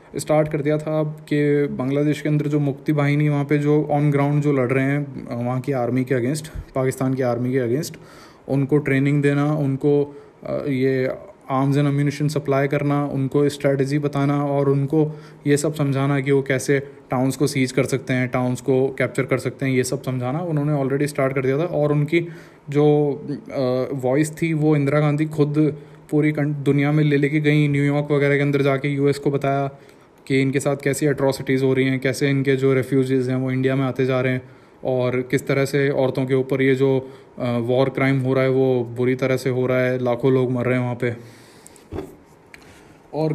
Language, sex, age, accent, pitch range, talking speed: Hindi, male, 20-39, native, 135-145 Hz, 200 wpm